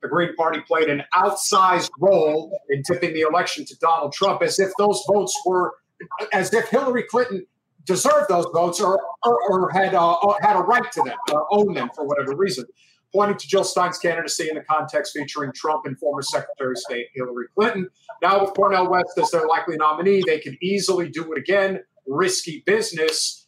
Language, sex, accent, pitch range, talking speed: English, male, American, 155-200 Hz, 190 wpm